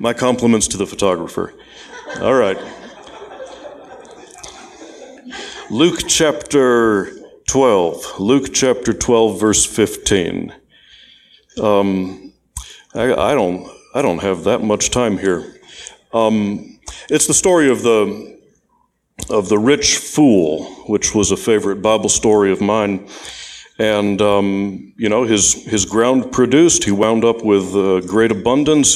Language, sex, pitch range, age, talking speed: English, male, 105-130 Hz, 60-79, 120 wpm